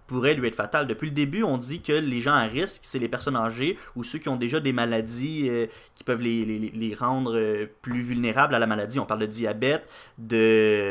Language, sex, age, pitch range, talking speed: French, male, 20-39, 115-145 Hz, 230 wpm